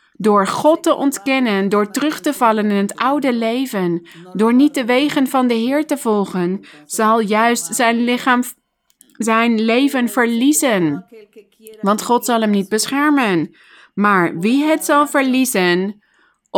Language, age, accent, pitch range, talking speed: Dutch, 20-39, Dutch, 205-250 Hz, 140 wpm